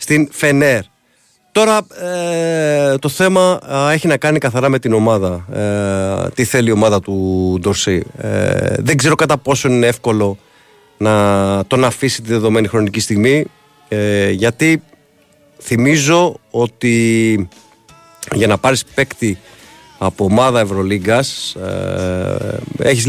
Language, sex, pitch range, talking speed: Greek, male, 100-135 Hz, 125 wpm